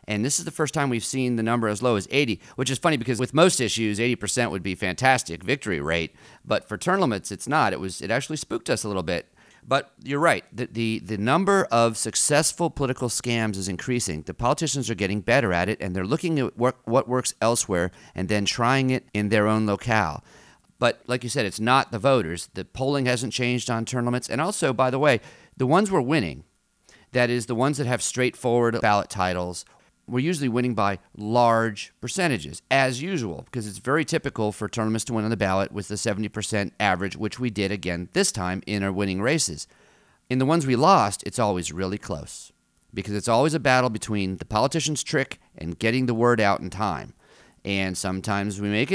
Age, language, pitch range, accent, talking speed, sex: 40-59, English, 100-130 Hz, American, 210 wpm, male